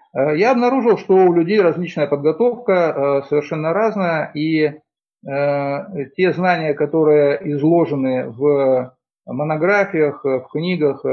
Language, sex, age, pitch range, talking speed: Russian, male, 50-69, 145-180 Hz, 95 wpm